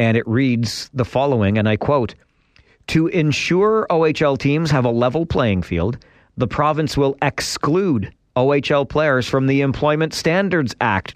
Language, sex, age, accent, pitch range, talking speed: English, male, 40-59, American, 105-135 Hz, 150 wpm